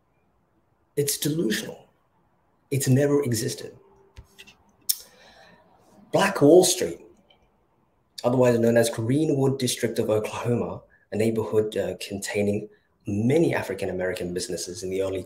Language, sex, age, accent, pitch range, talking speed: English, male, 30-49, British, 110-140 Hz, 100 wpm